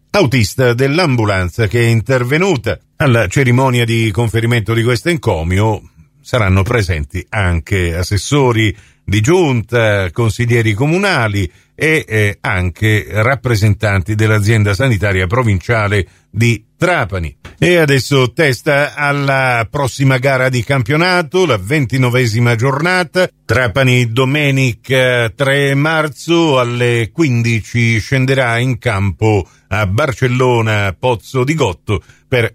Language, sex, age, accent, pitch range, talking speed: Italian, male, 50-69, native, 110-145 Hz, 100 wpm